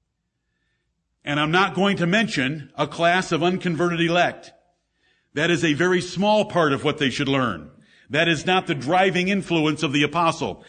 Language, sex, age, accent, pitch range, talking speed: English, male, 50-69, American, 160-195 Hz, 175 wpm